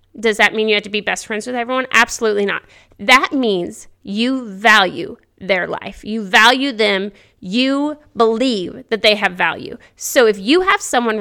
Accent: American